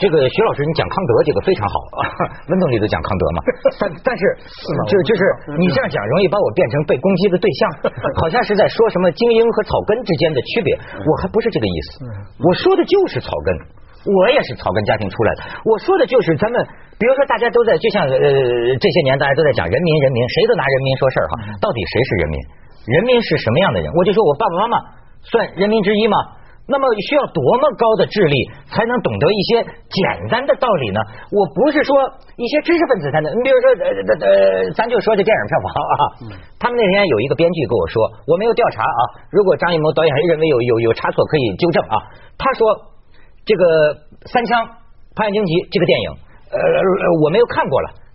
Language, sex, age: Chinese, male, 50-69